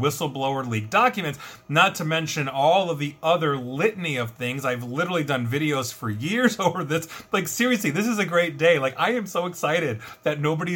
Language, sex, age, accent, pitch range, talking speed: English, male, 30-49, American, 130-170 Hz, 195 wpm